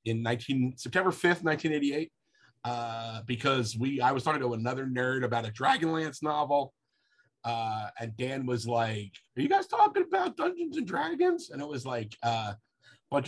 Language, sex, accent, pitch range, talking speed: English, male, American, 115-145 Hz, 165 wpm